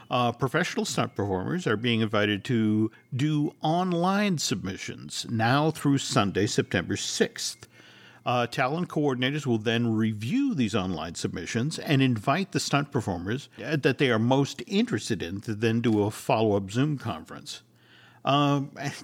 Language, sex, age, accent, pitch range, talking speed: English, male, 50-69, American, 105-145 Hz, 140 wpm